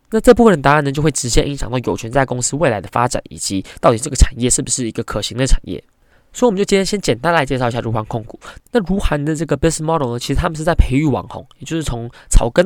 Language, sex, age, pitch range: Chinese, male, 20-39, 125-160 Hz